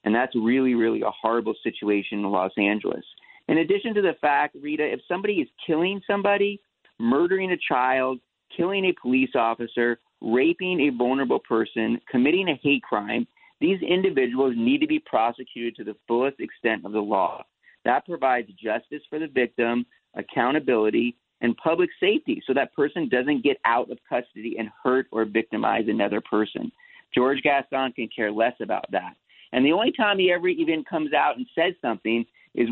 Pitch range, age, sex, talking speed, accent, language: 115-160 Hz, 40-59, male, 170 wpm, American, English